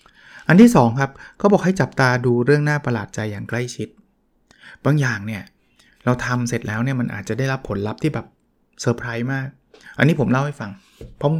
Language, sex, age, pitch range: Thai, male, 20-39, 120-145 Hz